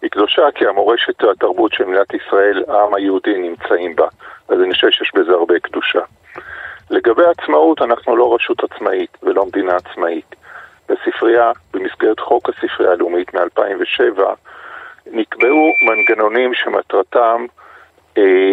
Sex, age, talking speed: male, 50-69, 125 wpm